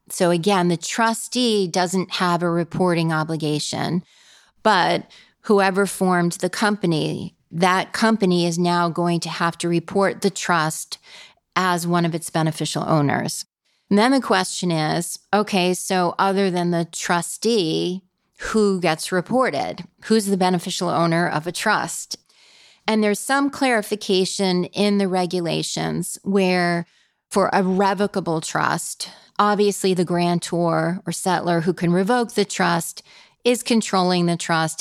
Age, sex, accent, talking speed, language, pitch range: 30-49, female, American, 135 wpm, English, 170-200 Hz